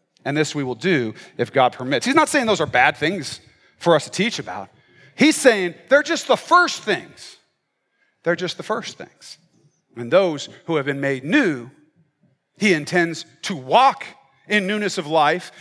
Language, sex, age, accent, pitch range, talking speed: English, male, 40-59, American, 145-185 Hz, 180 wpm